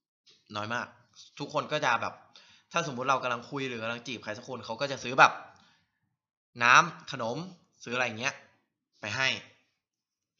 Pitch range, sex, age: 120-160 Hz, male, 20-39